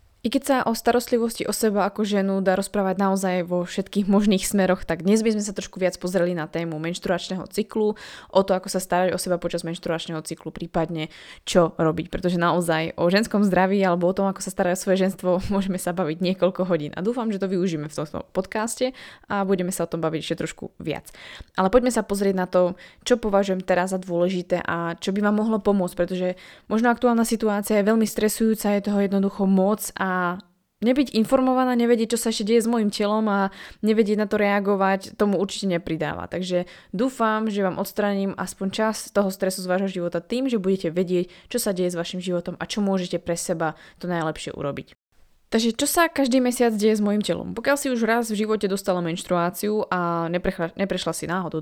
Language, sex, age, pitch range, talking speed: Slovak, female, 20-39, 175-215 Hz, 205 wpm